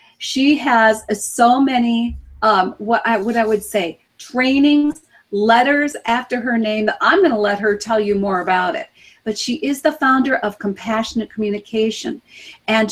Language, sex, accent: English, female, American